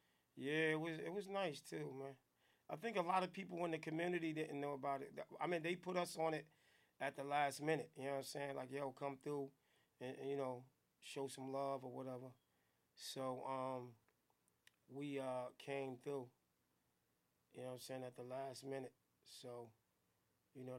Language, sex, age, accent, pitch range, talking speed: English, male, 30-49, American, 120-155 Hz, 195 wpm